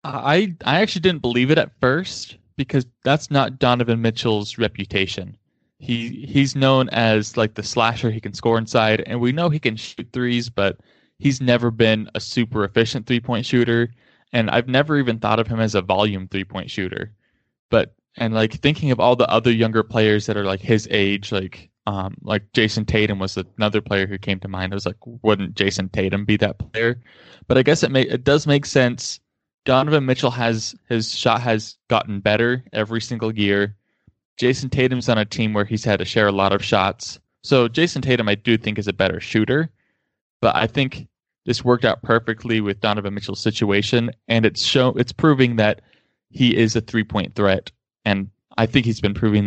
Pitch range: 100-125 Hz